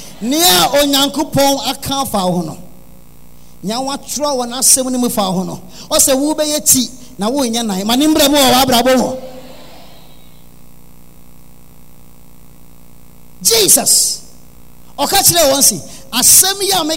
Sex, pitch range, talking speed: male, 175-270 Hz, 40 wpm